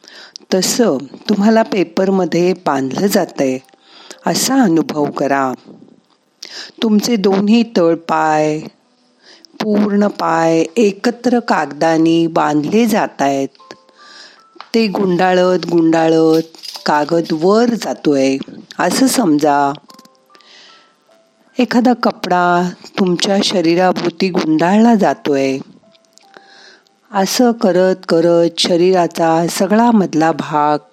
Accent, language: native, Marathi